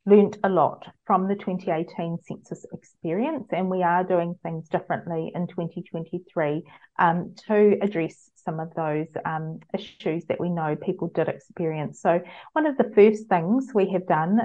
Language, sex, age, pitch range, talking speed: English, female, 30-49, 175-205 Hz, 160 wpm